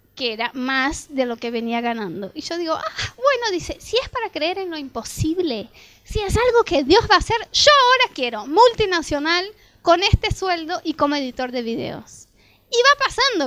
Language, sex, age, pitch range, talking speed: Spanish, female, 20-39, 260-370 Hz, 195 wpm